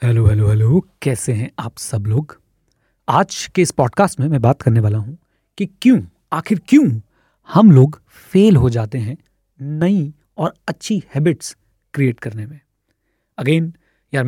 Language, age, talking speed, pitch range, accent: Hindi, 30-49, 155 wpm, 120-165 Hz, native